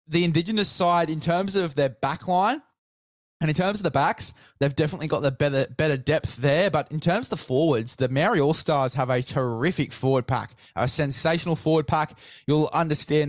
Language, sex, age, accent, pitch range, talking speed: English, male, 20-39, Australian, 130-155 Hz, 190 wpm